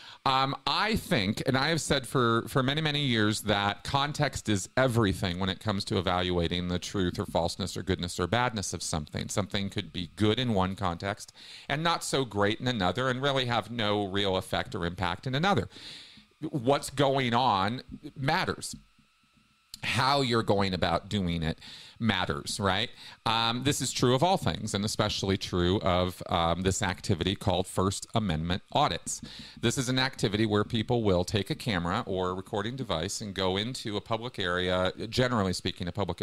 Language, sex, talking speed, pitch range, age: English, male, 180 wpm, 95-125 Hz, 40-59